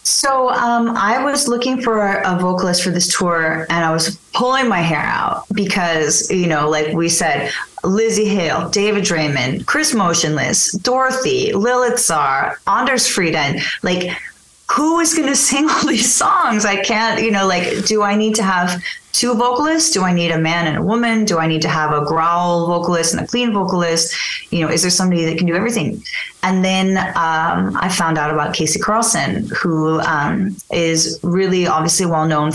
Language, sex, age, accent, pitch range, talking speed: Portuguese, female, 30-49, American, 165-210 Hz, 185 wpm